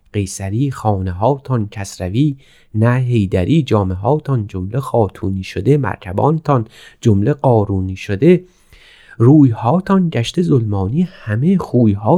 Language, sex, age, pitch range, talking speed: Persian, male, 40-59, 105-150 Hz, 115 wpm